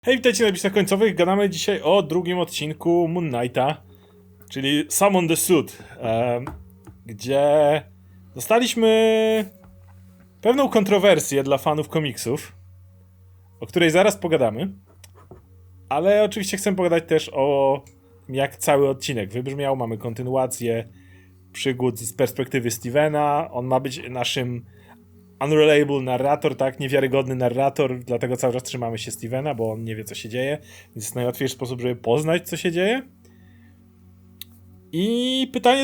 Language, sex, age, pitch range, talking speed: Polish, male, 30-49, 115-175 Hz, 130 wpm